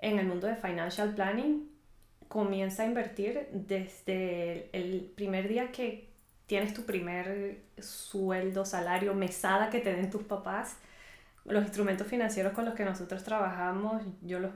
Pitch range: 185-220 Hz